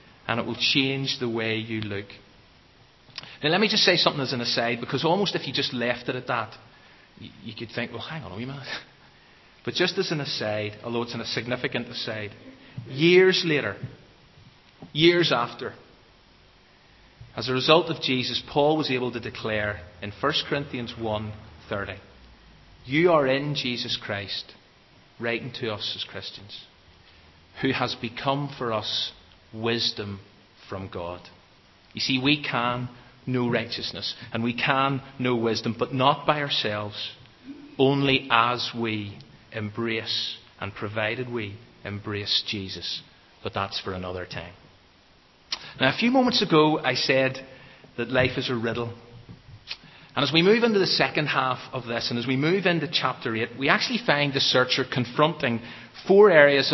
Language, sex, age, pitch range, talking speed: English, male, 30-49, 110-140 Hz, 155 wpm